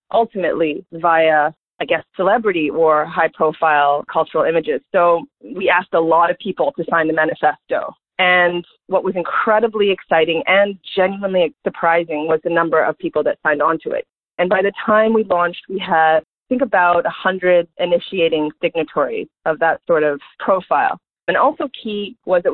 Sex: female